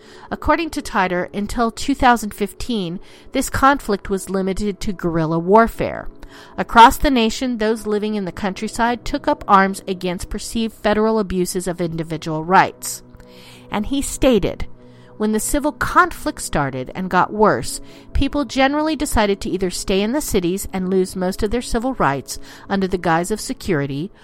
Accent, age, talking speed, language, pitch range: American, 50-69, 155 wpm, English, 180-240 Hz